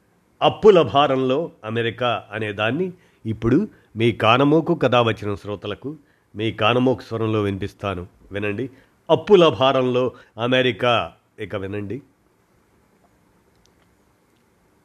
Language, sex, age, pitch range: Telugu, male, 50-69, 115-145 Hz